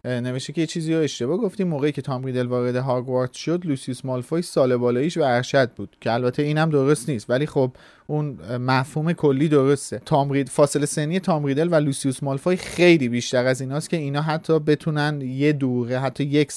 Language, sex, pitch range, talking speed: Persian, male, 125-160 Hz, 175 wpm